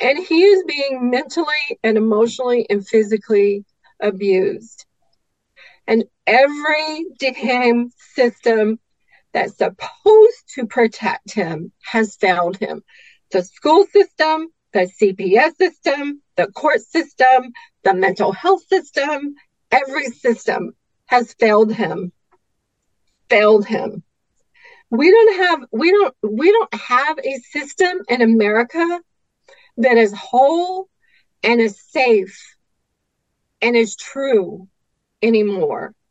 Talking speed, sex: 105 wpm, female